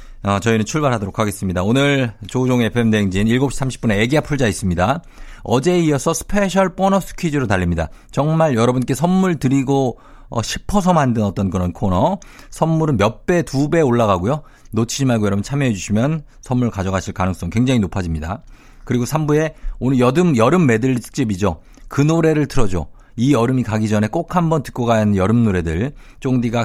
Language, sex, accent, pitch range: Korean, male, native, 105-145 Hz